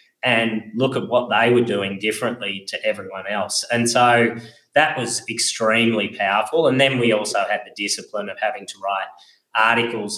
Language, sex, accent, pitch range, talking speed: English, male, Australian, 105-125 Hz, 170 wpm